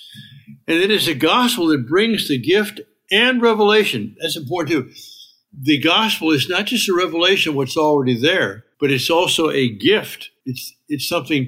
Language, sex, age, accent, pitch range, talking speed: English, male, 60-79, American, 135-180 Hz, 175 wpm